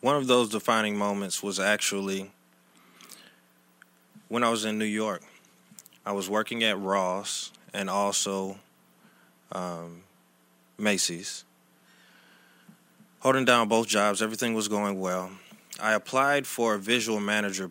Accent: American